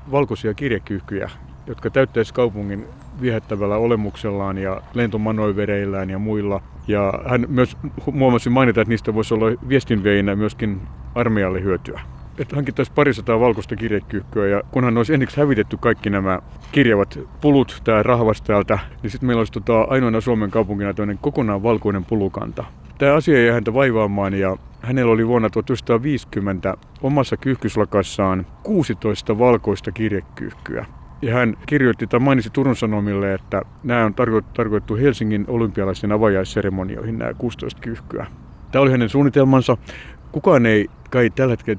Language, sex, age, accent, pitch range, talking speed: Finnish, male, 60-79, native, 100-125 Hz, 135 wpm